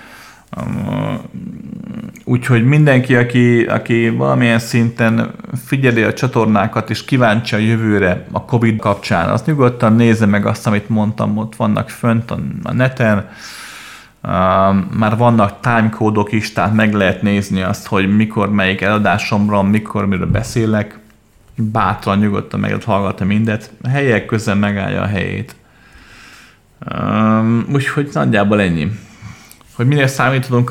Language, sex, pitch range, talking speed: Hungarian, male, 105-125 Hz, 125 wpm